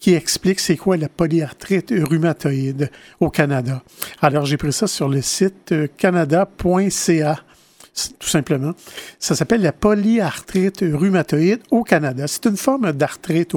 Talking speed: 135 wpm